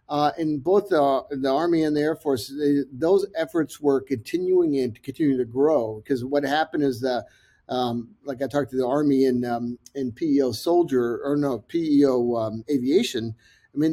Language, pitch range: English, 125-160 Hz